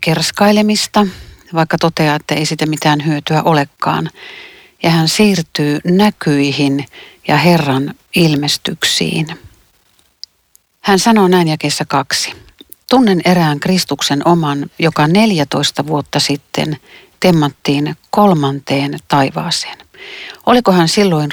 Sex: female